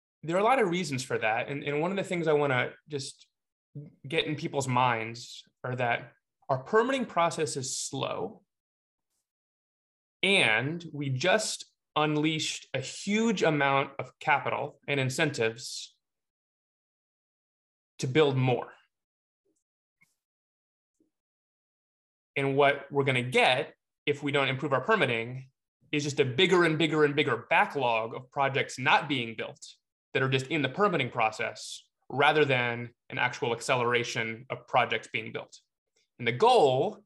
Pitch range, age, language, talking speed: 130-160 Hz, 20-39, English, 140 wpm